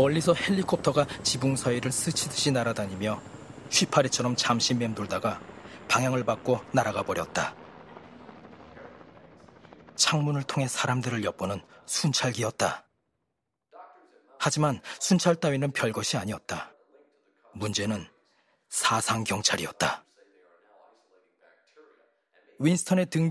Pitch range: 120-160 Hz